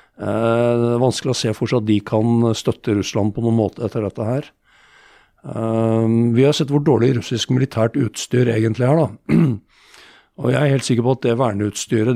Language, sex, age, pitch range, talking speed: English, male, 50-69, 110-125 Hz, 180 wpm